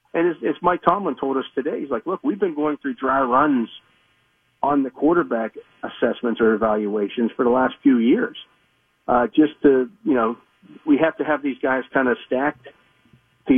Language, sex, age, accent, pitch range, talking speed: English, male, 50-69, American, 115-145 Hz, 185 wpm